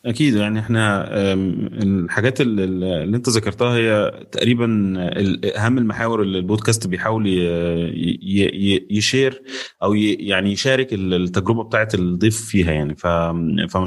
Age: 30-49